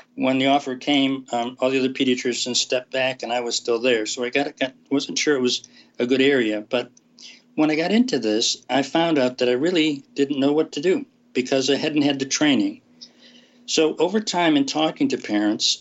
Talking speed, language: 210 wpm, English